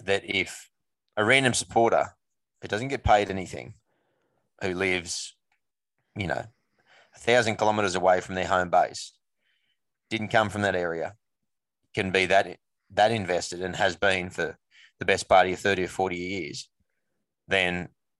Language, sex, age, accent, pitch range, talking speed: English, male, 20-39, Australian, 90-105 Hz, 150 wpm